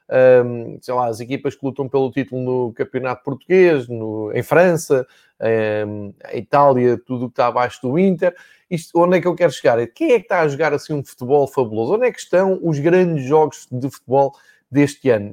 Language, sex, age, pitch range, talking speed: Portuguese, male, 20-39, 135-170 Hz, 205 wpm